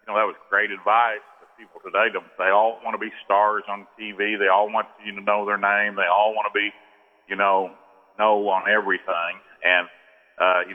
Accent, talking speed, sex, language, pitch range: American, 210 wpm, male, English, 100-115 Hz